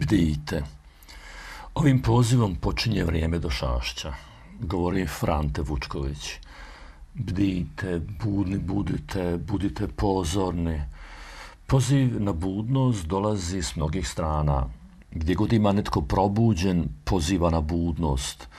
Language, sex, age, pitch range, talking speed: Croatian, male, 50-69, 75-100 Hz, 95 wpm